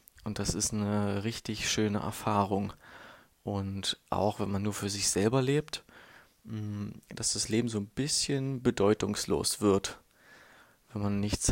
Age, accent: 20-39, German